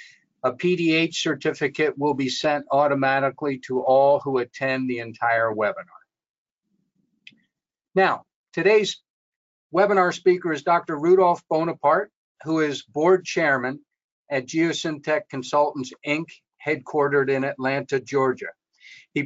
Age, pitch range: 50-69, 130-160 Hz